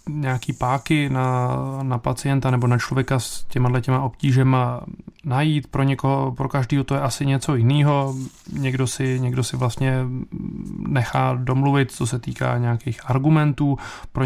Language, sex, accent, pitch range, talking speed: Czech, male, native, 125-140 Hz, 140 wpm